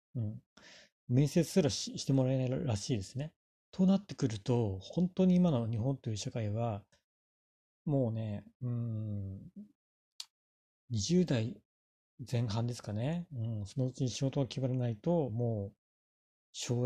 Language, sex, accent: Japanese, male, native